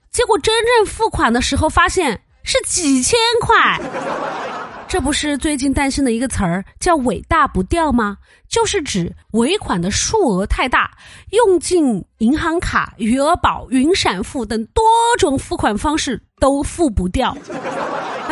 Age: 30-49